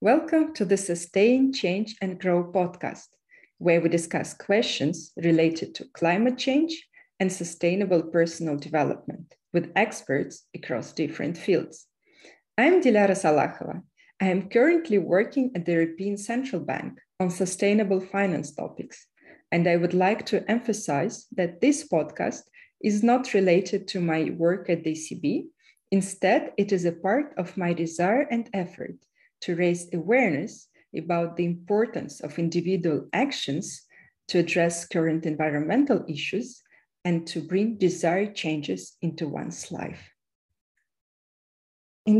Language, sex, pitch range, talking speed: English, female, 175-235 Hz, 130 wpm